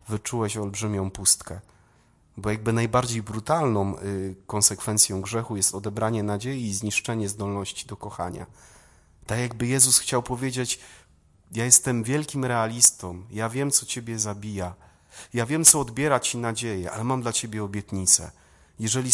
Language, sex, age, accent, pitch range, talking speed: Polish, male, 30-49, native, 100-125 Hz, 135 wpm